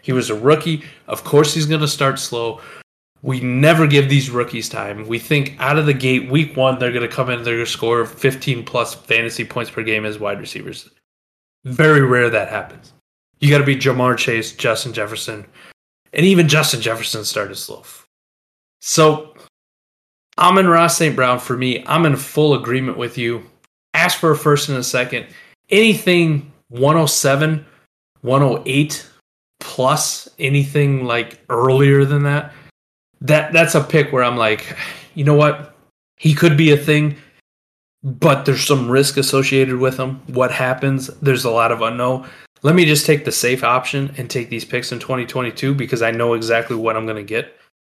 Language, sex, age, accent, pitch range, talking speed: English, male, 20-39, American, 115-150 Hz, 180 wpm